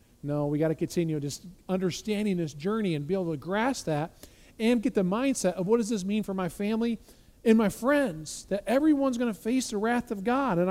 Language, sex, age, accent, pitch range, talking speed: English, male, 40-59, American, 185-245 Hz, 225 wpm